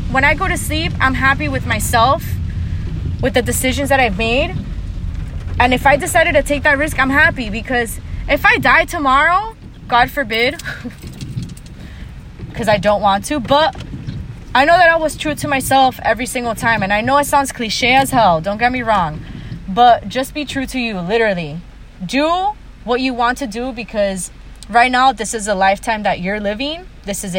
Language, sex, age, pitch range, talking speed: English, female, 20-39, 195-265 Hz, 190 wpm